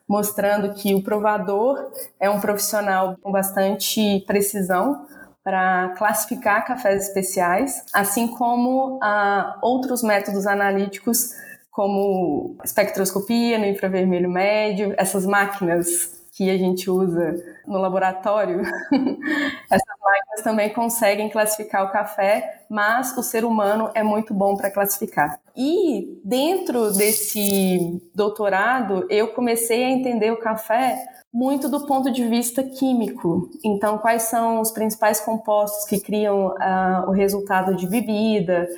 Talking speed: 120 wpm